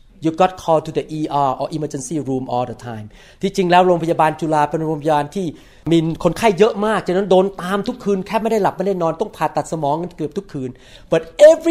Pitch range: 155-225 Hz